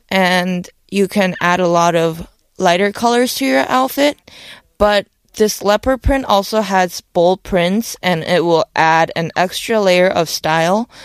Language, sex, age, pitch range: Korean, female, 20-39, 180-225 Hz